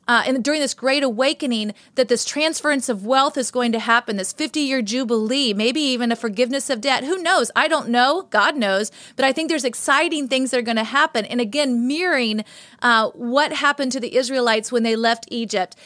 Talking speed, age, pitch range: 205 wpm, 30-49, 225-270 Hz